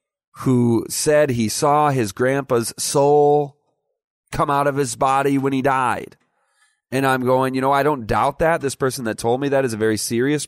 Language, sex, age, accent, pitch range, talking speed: English, male, 30-49, American, 115-155 Hz, 195 wpm